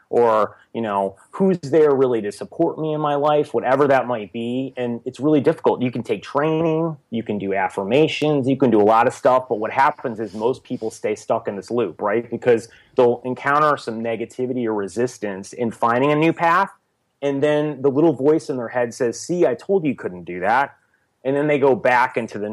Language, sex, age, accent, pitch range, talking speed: English, male, 30-49, American, 110-145 Hz, 220 wpm